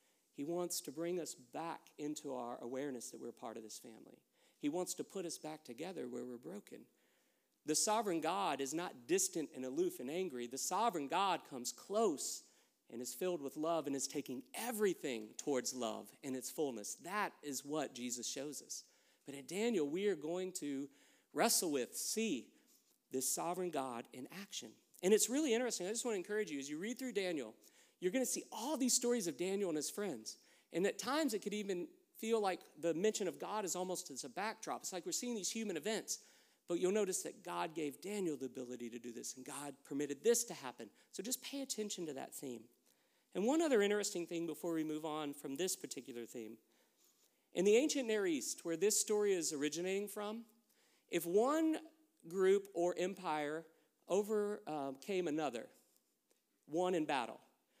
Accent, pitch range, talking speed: American, 145-215 Hz, 190 wpm